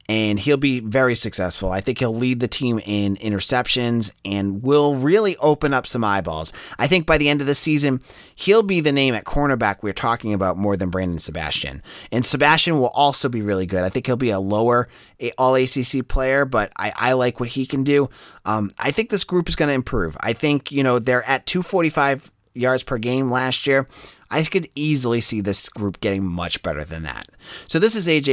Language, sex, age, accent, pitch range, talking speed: English, male, 30-49, American, 105-150 Hz, 215 wpm